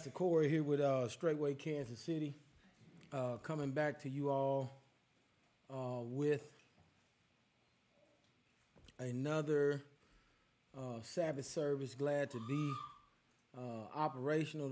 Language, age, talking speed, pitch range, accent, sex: English, 30-49, 100 wpm, 120-150 Hz, American, male